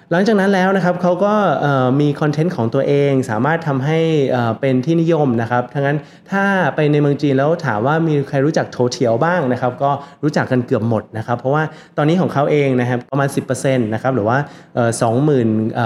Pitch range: 125-170 Hz